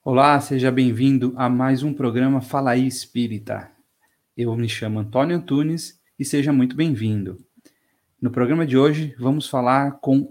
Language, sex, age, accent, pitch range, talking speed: Polish, male, 40-59, Brazilian, 120-150 Hz, 150 wpm